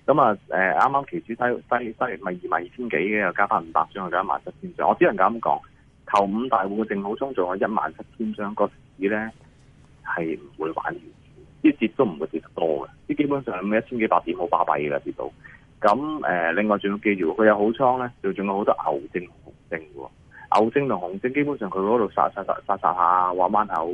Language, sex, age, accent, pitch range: Chinese, male, 30-49, native, 90-125 Hz